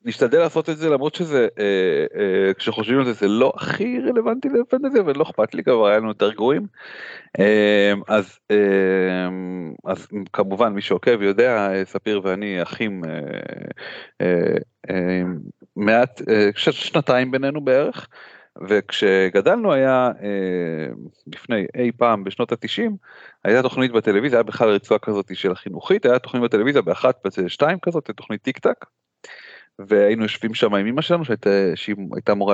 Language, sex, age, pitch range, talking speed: Hebrew, male, 30-49, 95-125 Hz, 145 wpm